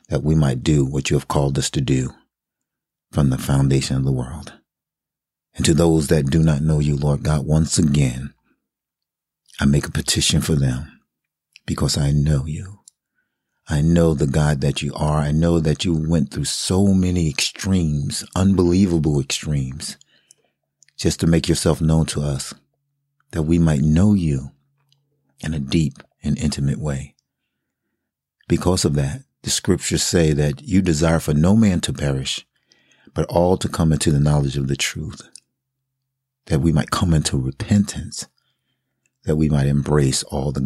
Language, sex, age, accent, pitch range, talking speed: English, male, 40-59, American, 70-85 Hz, 165 wpm